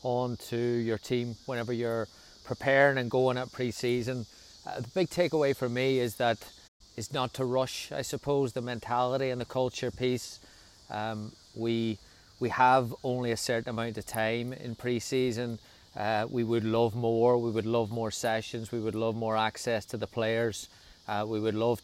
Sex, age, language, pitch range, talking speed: male, 30-49, English, 110-125 Hz, 175 wpm